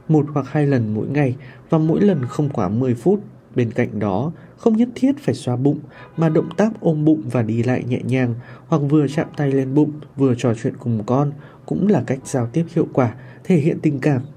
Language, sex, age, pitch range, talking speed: Vietnamese, male, 20-39, 120-160 Hz, 225 wpm